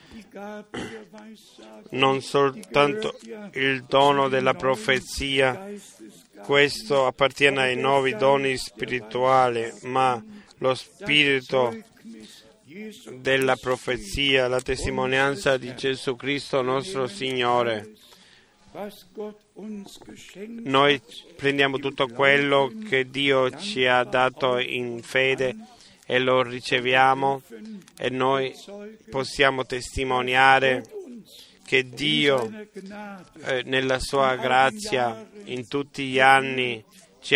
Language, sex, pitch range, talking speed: Italian, male, 130-160 Hz, 85 wpm